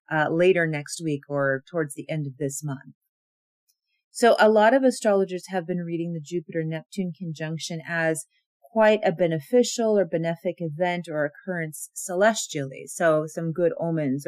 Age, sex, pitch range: 40-59, female, 160-200 Hz